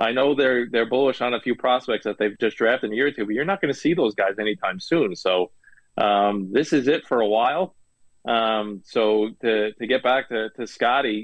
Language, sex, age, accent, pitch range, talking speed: English, male, 20-39, American, 105-125 Hz, 240 wpm